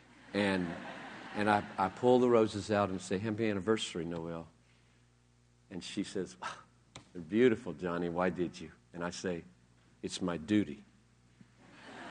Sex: male